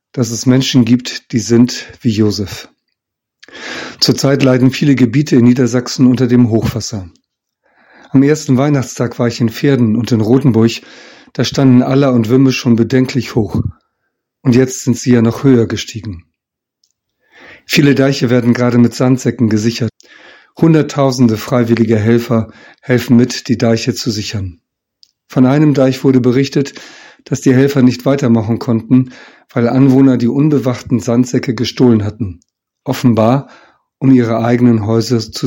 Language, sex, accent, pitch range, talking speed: German, male, German, 115-130 Hz, 140 wpm